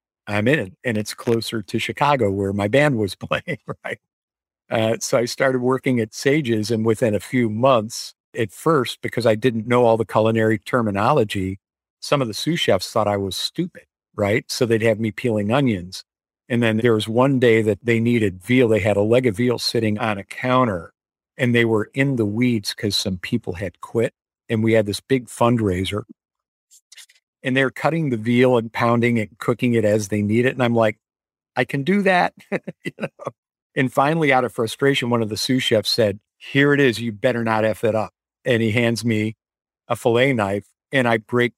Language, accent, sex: English, American, male